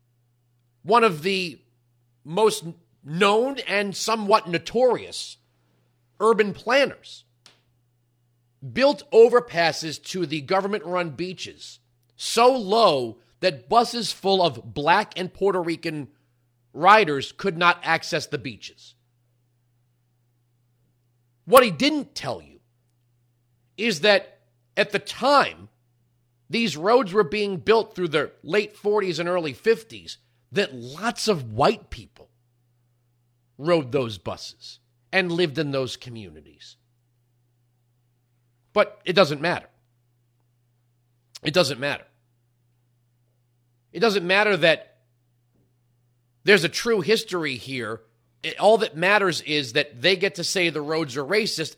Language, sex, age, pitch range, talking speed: English, male, 40-59, 120-190 Hz, 110 wpm